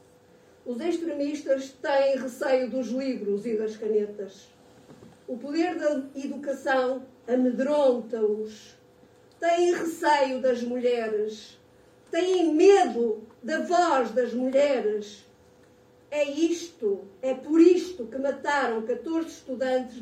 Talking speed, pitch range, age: 100 wpm, 225-280 Hz, 50-69